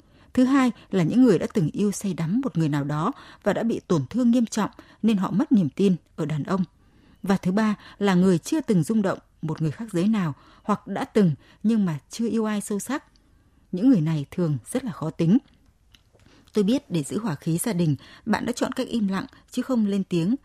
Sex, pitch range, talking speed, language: female, 165-230 Hz, 230 wpm, Vietnamese